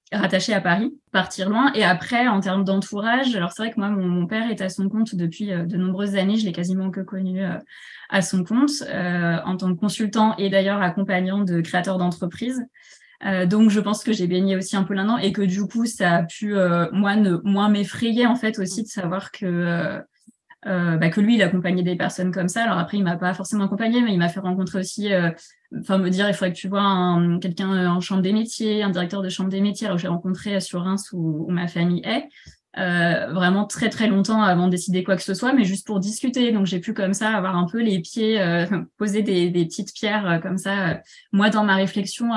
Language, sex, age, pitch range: French, female, 20-39, 180-220 Hz